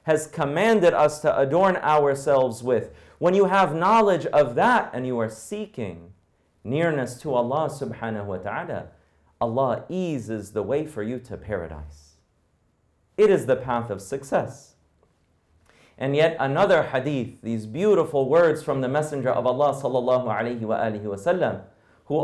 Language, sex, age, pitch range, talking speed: English, male, 40-59, 110-155 Hz, 135 wpm